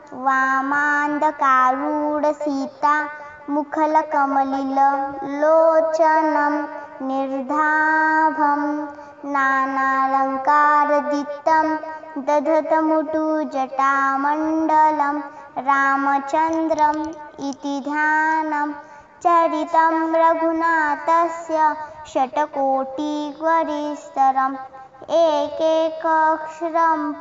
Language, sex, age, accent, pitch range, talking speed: Marathi, male, 20-39, native, 280-320 Hz, 40 wpm